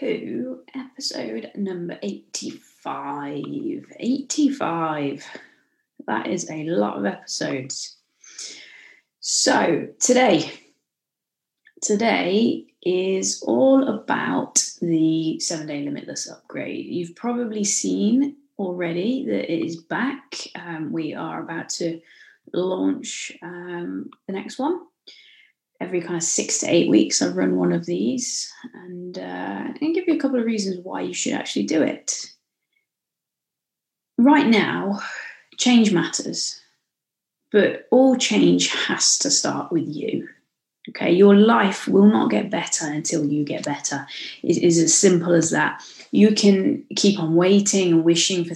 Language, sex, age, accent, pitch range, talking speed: English, female, 20-39, British, 165-220 Hz, 125 wpm